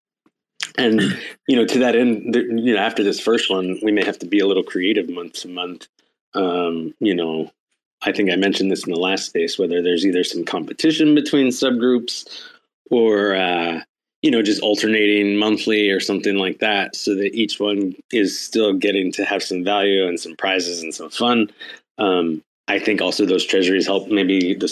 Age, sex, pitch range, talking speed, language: 20-39, male, 90-115 Hz, 190 wpm, English